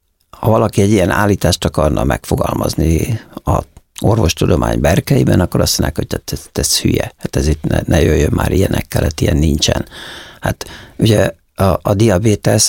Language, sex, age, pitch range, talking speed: Hungarian, male, 60-79, 85-115 Hz, 160 wpm